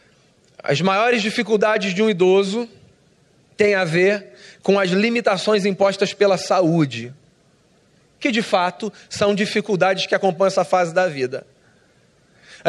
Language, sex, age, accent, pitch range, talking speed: Portuguese, male, 30-49, Brazilian, 170-210 Hz, 130 wpm